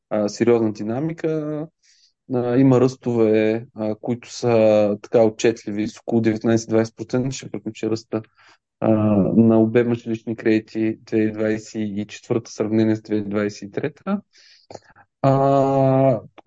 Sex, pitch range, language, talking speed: male, 115-155 Hz, Bulgarian, 95 wpm